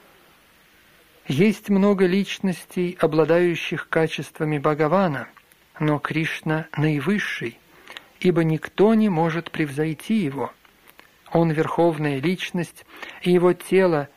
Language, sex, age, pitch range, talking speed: Russian, male, 50-69, 155-190 Hz, 95 wpm